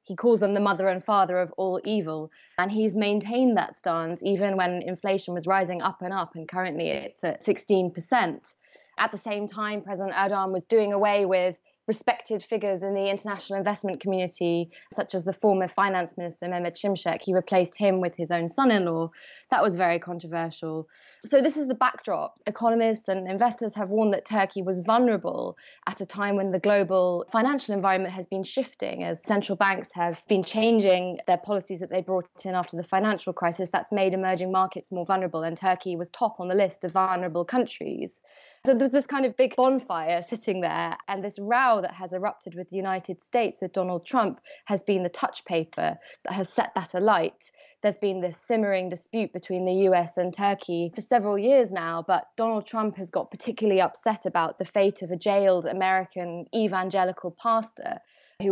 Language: English